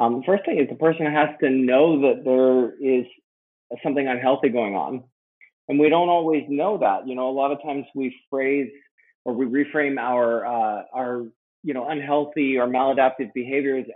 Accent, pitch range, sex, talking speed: American, 125-145 Hz, male, 185 wpm